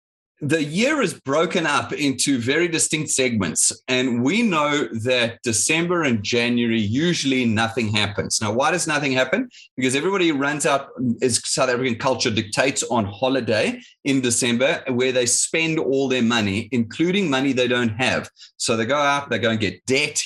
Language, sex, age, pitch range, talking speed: English, male, 30-49, 115-165 Hz, 170 wpm